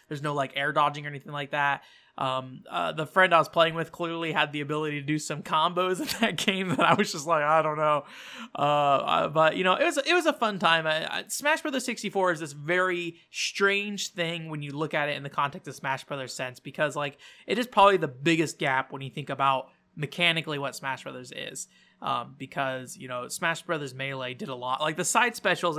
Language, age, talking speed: English, 20-39, 235 wpm